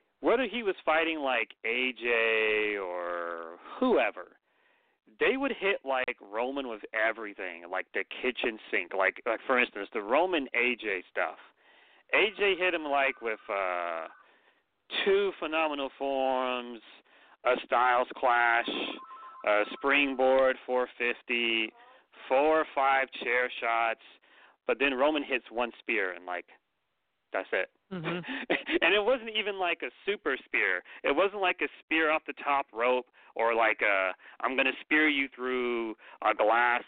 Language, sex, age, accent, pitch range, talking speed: English, male, 30-49, American, 115-170 Hz, 140 wpm